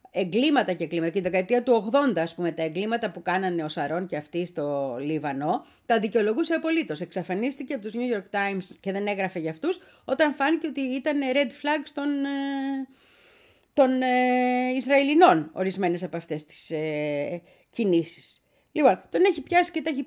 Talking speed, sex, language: 175 wpm, female, Greek